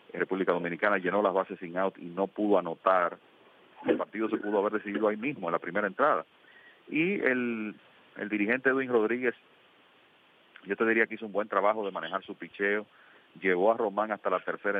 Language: English